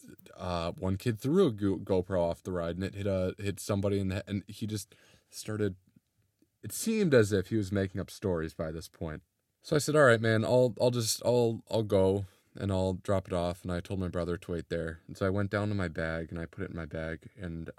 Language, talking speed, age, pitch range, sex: English, 250 wpm, 20-39, 85-105 Hz, male